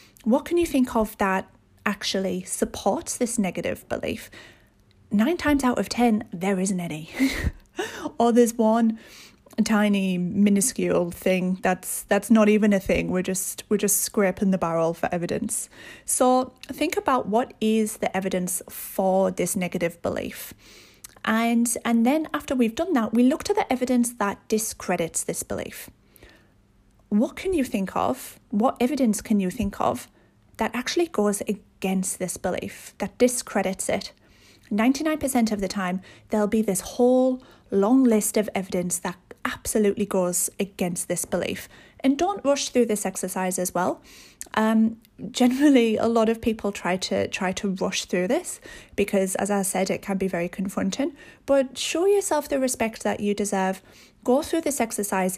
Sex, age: female, 30-49